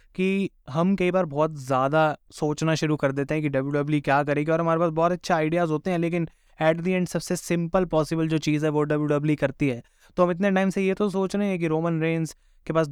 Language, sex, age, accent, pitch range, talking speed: Hindi, male, 20-39, native, 150-175 Hz, 240 wpm